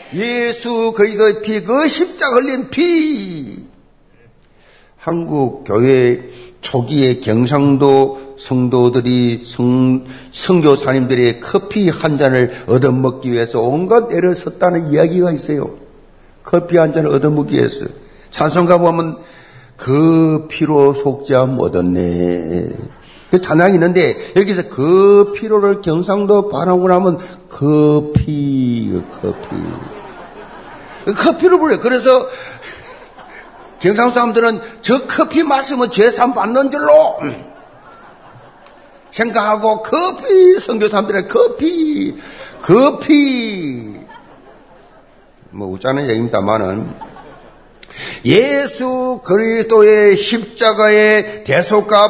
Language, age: Korean, 50-69